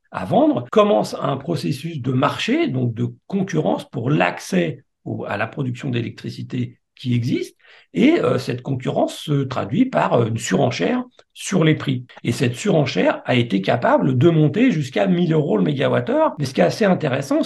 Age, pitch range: 50-69, 140-225 Hz